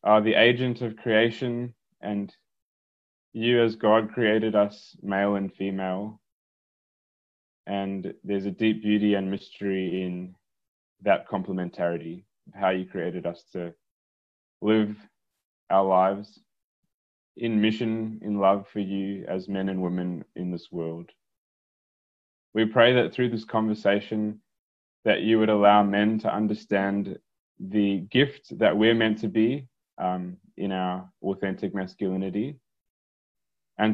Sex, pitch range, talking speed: male, 90-105 Hz, 125 wpm